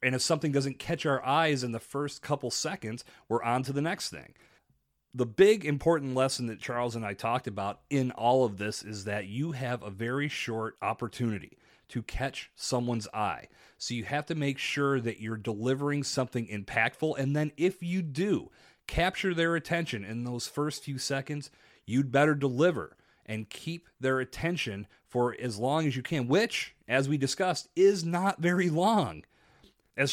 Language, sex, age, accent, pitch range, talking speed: English, male, 30-49, American, 115-155 Hz, 180 wpm